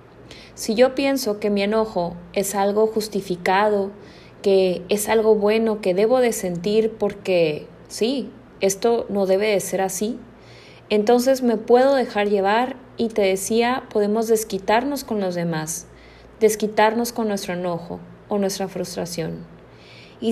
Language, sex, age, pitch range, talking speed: Spanish, female, 20-39, 200-245 Hz, 135 wpm